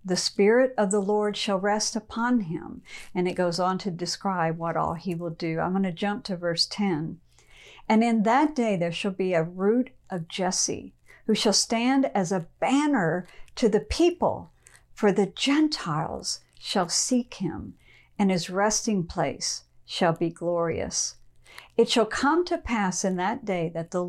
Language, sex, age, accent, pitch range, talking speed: English, female, 50-69, American, 175-225 Hz, 175 wpm